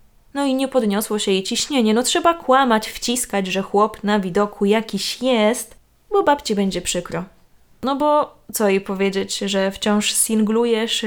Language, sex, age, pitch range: Polish, female, 20-39, 195-235 Hz